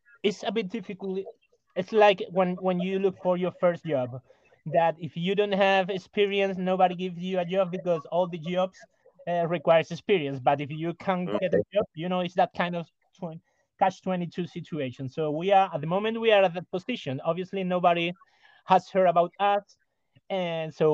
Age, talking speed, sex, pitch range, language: 30-49, 200 wpm, male, 150-185 Hz, English